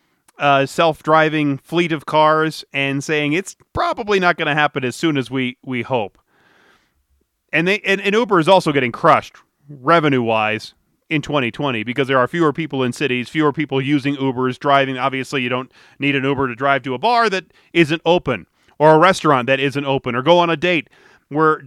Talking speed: 195 wpm